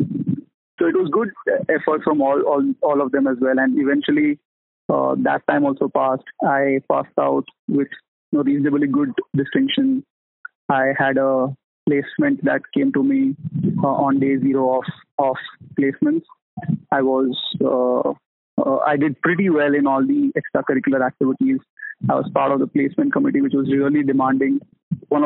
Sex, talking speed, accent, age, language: male, 160 wpm, Indian, 20-39, English